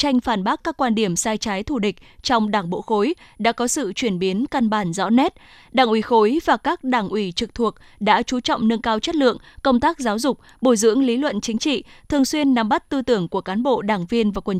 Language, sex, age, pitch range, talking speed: Vietnamese, female, 10-29, 210-265 Hz, 255 wpm